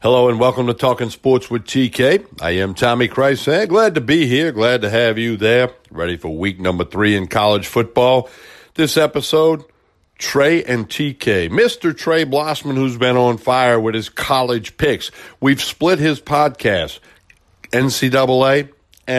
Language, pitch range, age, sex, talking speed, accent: English, 110-135 Hz, 60-79, male, 155 wpm, American